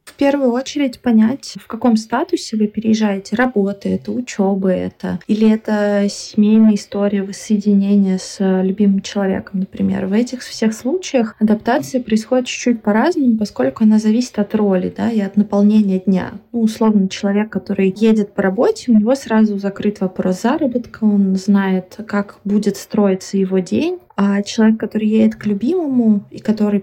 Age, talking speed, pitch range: 20-39, 150 wpm, 195-225 Hz